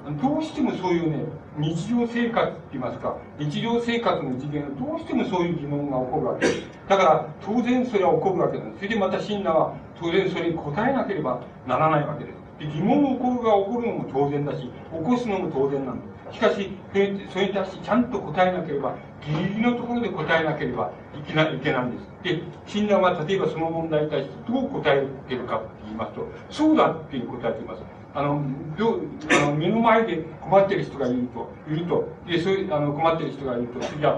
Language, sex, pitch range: Japanese, male, 140-195 Hz